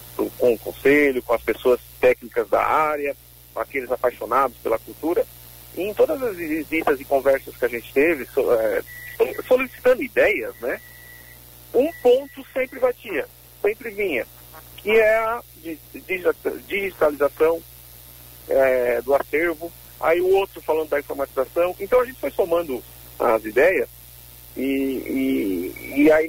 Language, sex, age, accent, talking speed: Portuguese, male, 50-69, Brazilian, 140 wpm